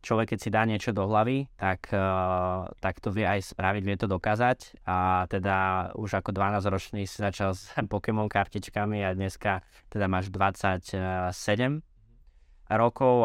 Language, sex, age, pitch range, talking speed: Slovak, male, 20-39, 95-105 Hz, 150 wpm